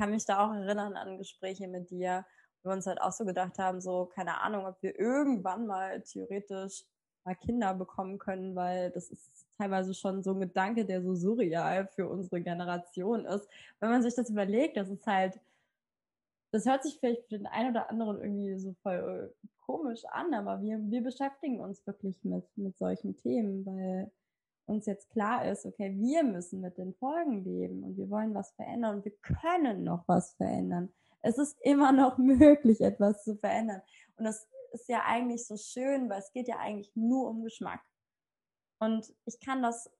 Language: German